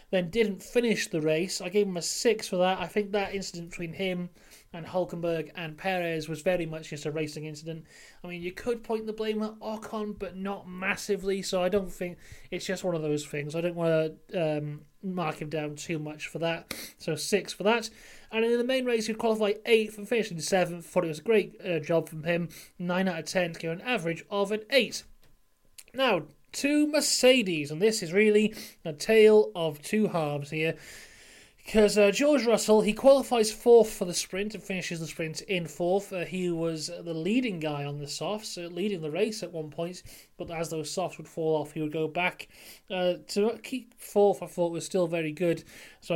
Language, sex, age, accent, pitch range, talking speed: English, male, 30-49, British, 165-215 Hz, 215 wpm